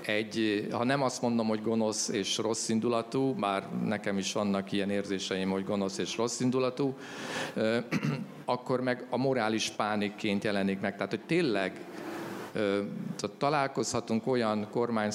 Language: Hungarian